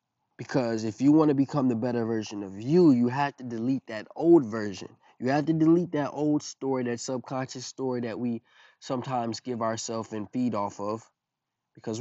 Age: 20-39